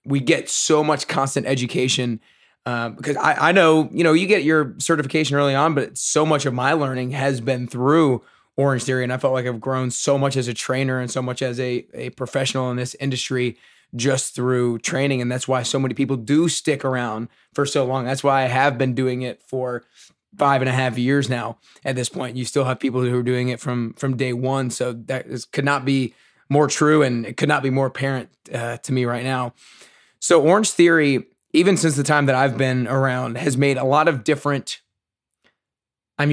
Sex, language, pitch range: male, English, 130-145 Hz